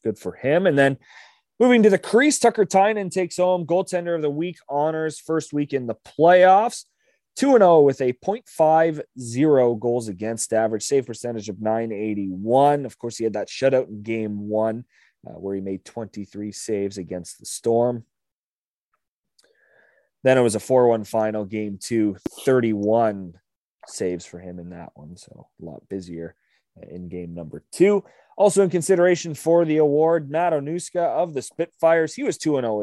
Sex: male